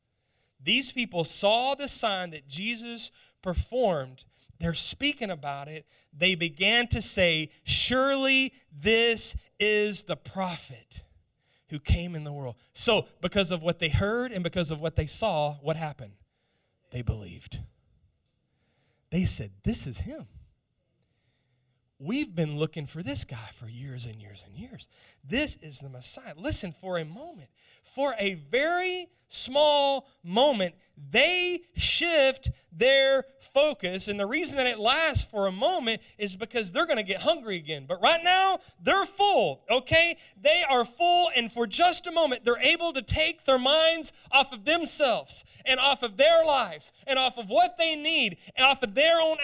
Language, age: English, 30-49